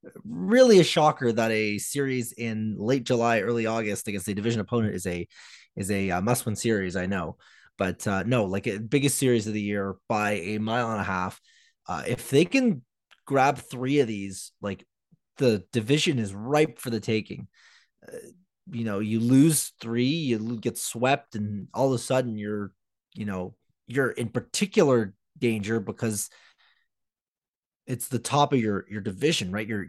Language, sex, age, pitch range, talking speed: English, male, 20-39, 105-135 Hz, 175 wpm